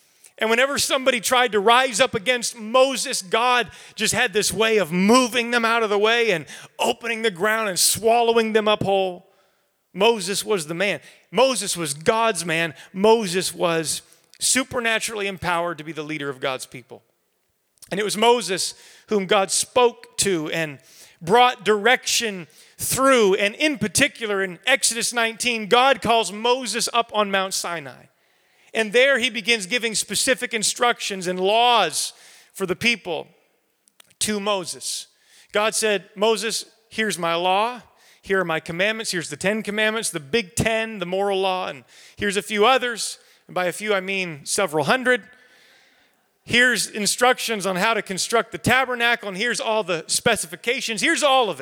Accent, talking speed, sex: American, 160 wpm, male